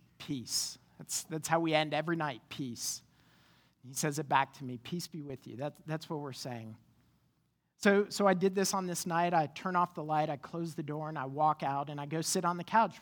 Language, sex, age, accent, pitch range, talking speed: English, male, 40-59, American, 150-185 Hz, 240 wpm